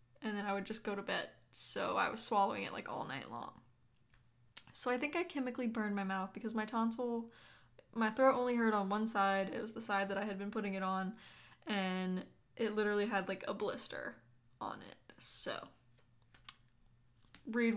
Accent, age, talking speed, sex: American, 10-29, 195 wpm, female